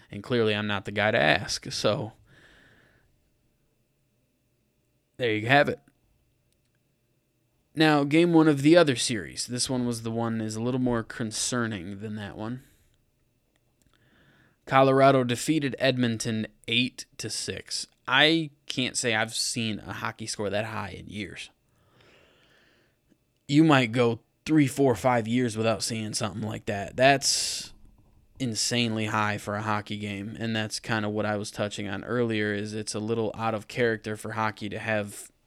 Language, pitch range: English, 105-125 Hz